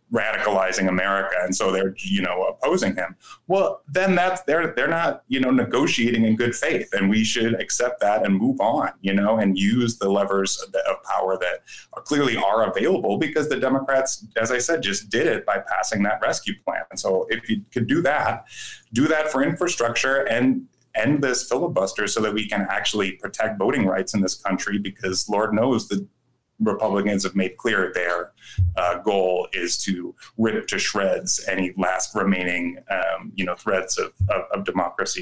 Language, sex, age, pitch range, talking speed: English, male, 30-49, 95-125 Hz, 185 wpm